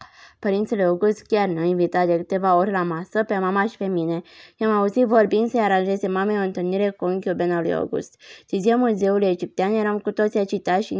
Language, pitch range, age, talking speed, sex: Romanian, 180-215 Hz, 20-39, 195 wpm, female